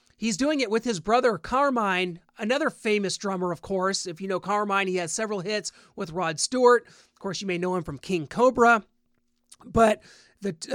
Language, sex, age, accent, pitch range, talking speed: English, male, 30-49, American, 180-220 Hz, 190 wpm